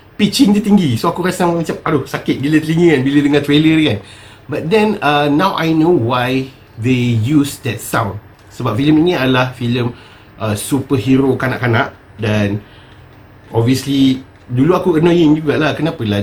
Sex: male